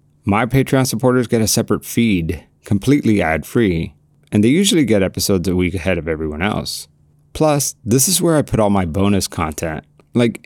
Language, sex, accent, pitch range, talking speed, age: English, male, American, 85-115 Hz, 180 wpm, 30-49